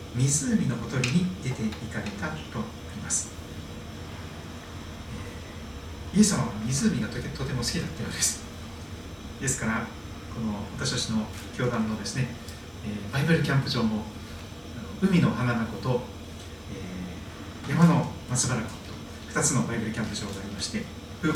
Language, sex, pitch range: Japanese, male, 100-120 Hz